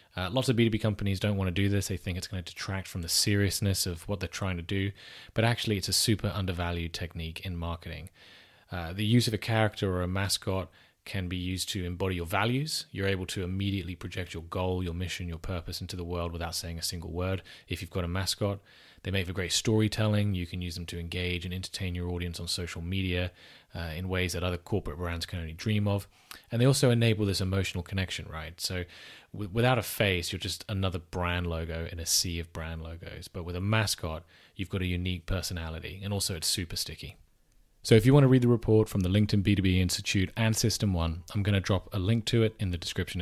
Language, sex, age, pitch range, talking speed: English, male, 20-39, 90-110 Hz, 235 wpm